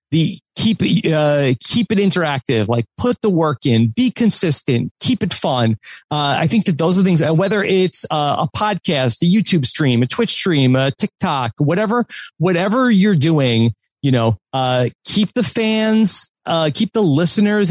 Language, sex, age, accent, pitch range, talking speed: English, male, 30-49, American, 130-180 Hz, 170 wpm